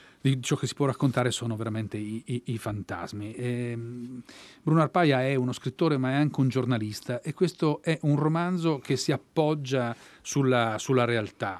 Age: 40-59